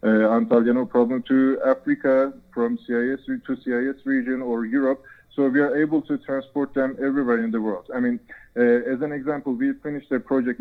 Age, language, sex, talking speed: 20-39, English, male, 190 wpm